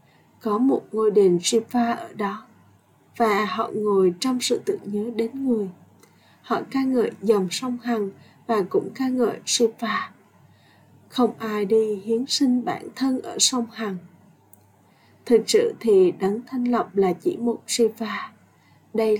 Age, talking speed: 20-39, 150 wpm